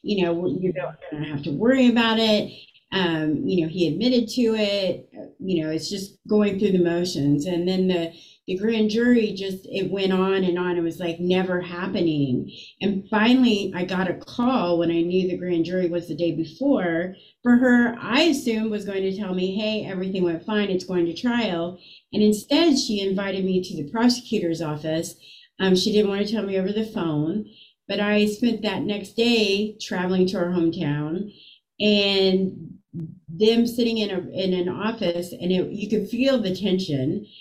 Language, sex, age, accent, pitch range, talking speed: English, female, 40-59, American, 170-215 Hz, 190 wpm